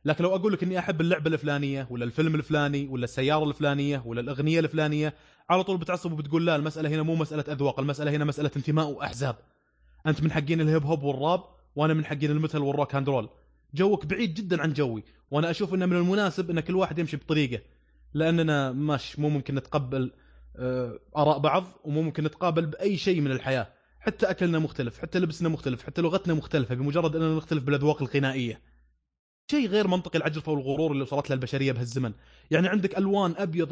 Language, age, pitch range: Arabic, 20-39, 140-170 Hz